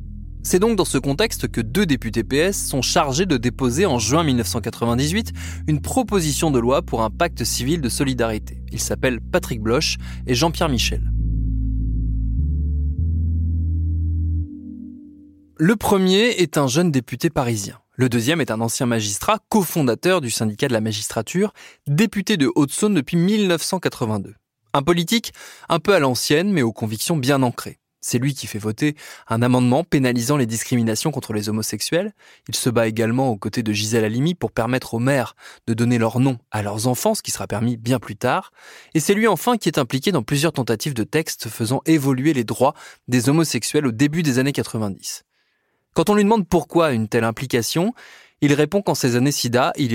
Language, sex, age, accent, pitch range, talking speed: French, male, 20-39, French, 115-160 Hz, 175 wpm